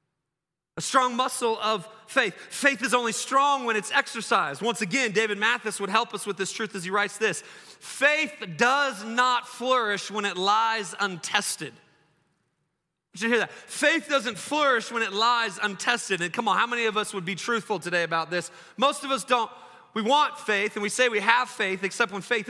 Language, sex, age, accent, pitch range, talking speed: English, male, 30-49, American, 215-275 Hz, 195 wpm